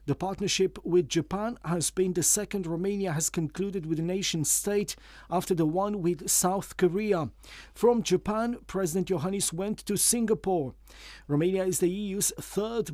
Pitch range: 170-205 Hz